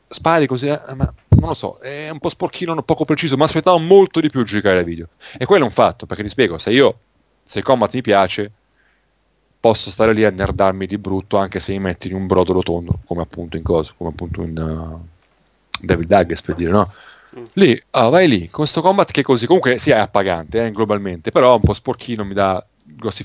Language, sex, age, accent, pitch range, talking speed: Italian, male, 30-49, native, 100-130 Hz, 230 wpm